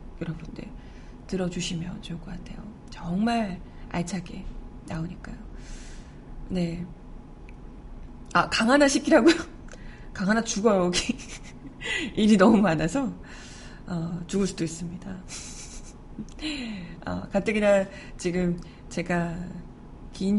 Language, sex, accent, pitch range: Korean, female, native, 175-230 Hz